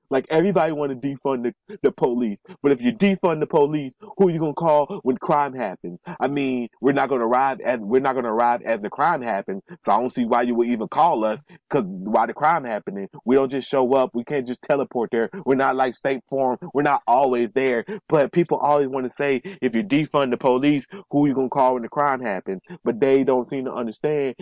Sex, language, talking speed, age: male, English, 250 wpm, 30-49